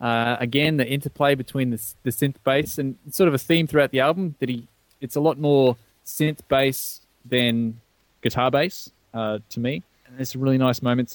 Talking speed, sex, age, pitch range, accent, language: 200 wpm, male, 20-39, 115-145 Hz, Australian, English